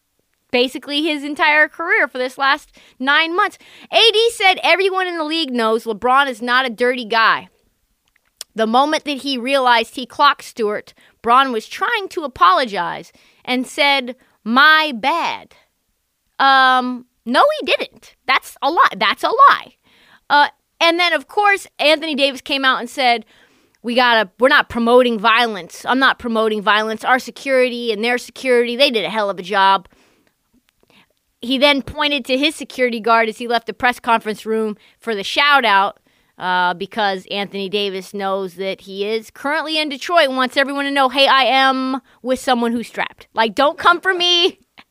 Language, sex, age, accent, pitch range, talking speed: English, female, 30-49, American, 230-305 Hz, 170 wpm